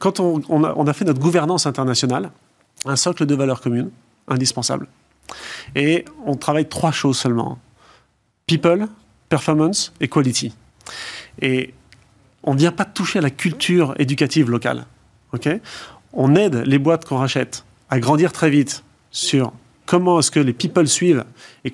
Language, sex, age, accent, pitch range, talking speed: French, male, 40-59, French, 130-165 Hz, 145 wpm